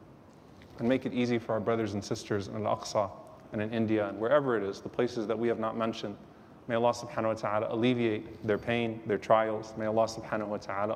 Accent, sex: American, male